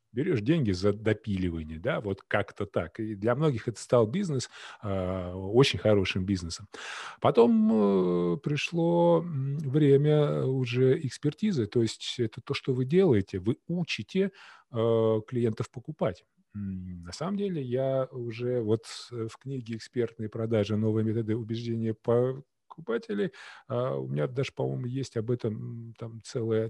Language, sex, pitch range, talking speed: Russian, male, 115-160 Hz, 135 wpm